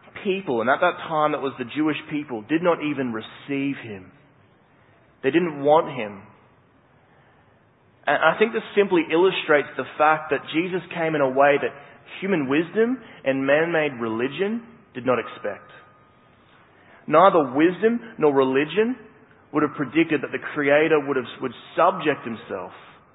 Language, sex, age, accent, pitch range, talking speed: English, male, 30-49, Australian, 130-160 Hz, 145 wpm